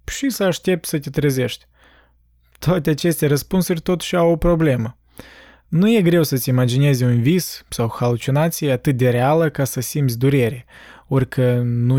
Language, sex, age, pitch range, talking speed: Romanian, male, 20-39, 125-160 Hz, 155 wpm